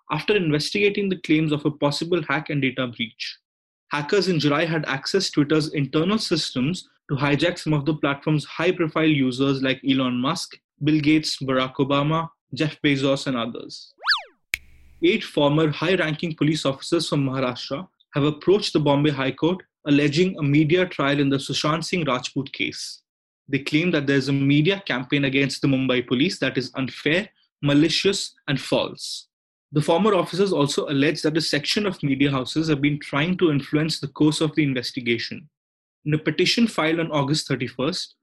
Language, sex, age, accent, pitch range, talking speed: English, male, 20-39, Indian, 140-170 Hz, 170 wpm